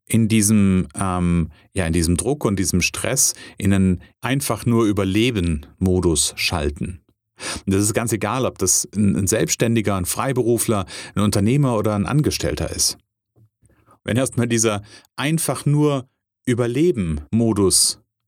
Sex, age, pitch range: male, 40-59, 95-115 Hz